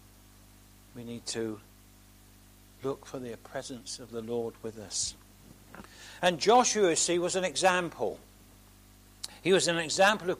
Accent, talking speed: British, 140 wpm